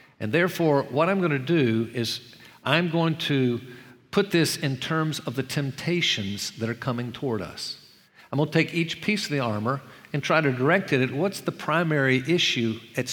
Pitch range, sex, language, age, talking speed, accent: 120-160 Hz, male, English, 50-69, 195 wpm, American